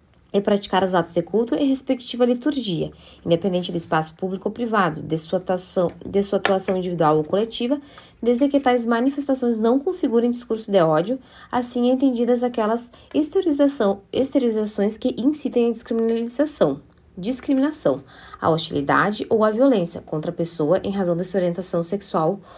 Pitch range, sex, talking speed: 185-245 Hz, female, 150 wpm